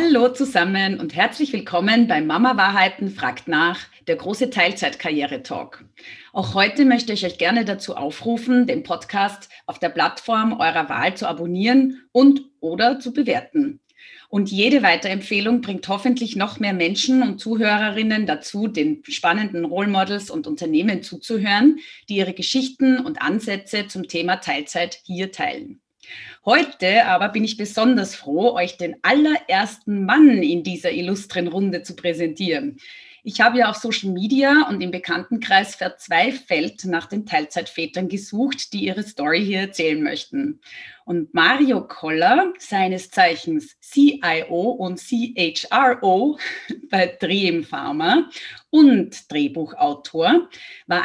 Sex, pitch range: female, 180-255 Hz